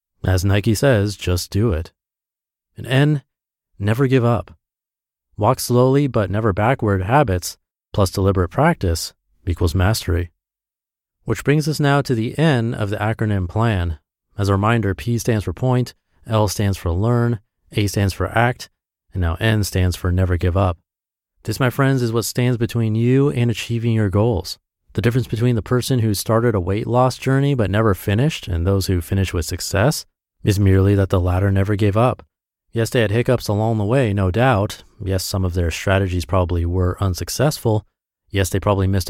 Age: 30-49